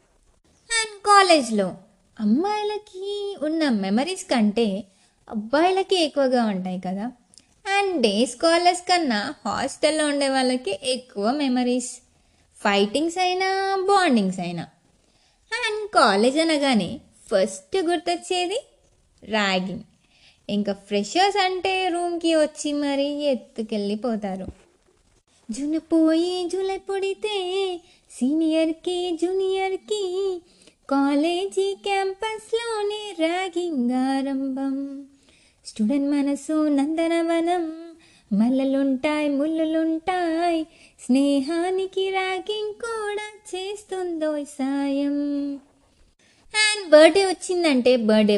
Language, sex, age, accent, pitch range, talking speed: Telugu, female, 20-39, native, 250-375 Hz, 50 wpm